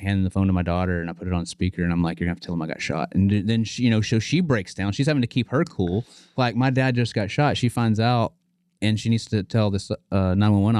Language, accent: English, American